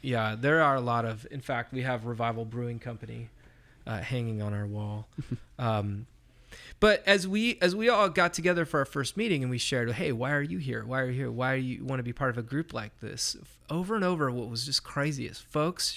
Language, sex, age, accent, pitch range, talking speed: English, male, 30-49, American, 115-145 Hz, 235 wpm